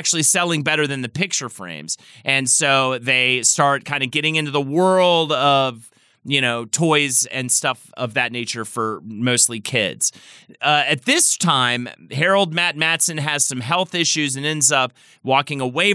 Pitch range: 120-160 Hz